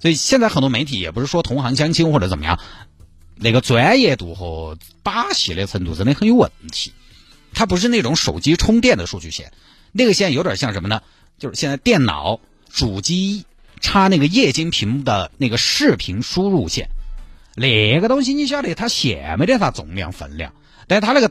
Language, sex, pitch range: Chinese, male, 95-155 Hz